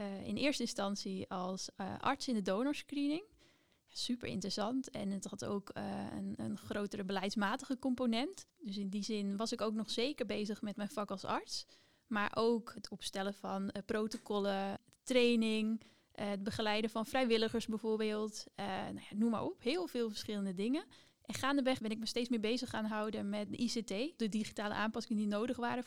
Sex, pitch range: female, 205-240 Hz